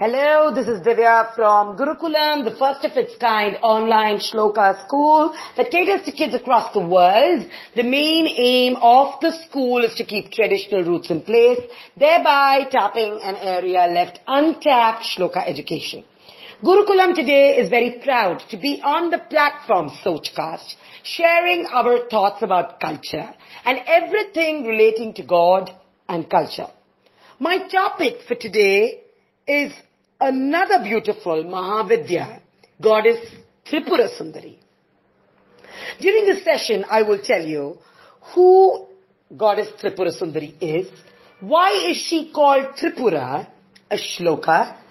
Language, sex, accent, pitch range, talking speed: English, female, Indian, 210-340 Hz, 125 wpm